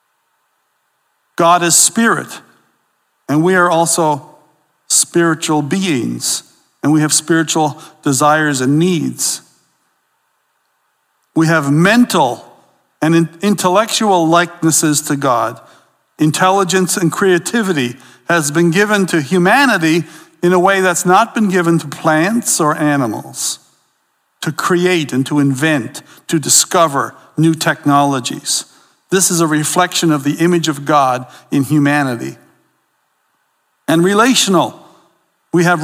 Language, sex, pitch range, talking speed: English, male, 150-180 Hz, 110 wpm